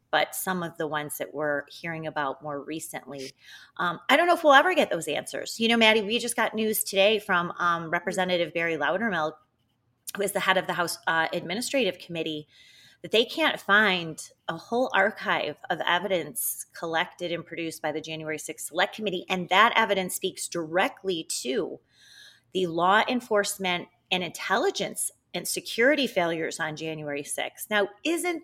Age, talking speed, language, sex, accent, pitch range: 30-49, 170 wpm, English, female, American, 155-200 Hz